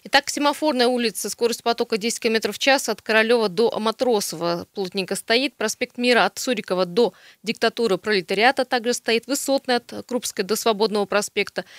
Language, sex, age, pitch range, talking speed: Russian, female, 20-39, 205-245 Hz, 155 wpm